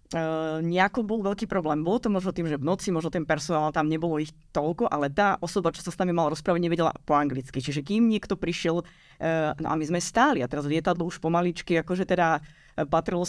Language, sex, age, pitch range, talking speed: Slovak, female, 20-39, 155-195 Hz, 220 wpm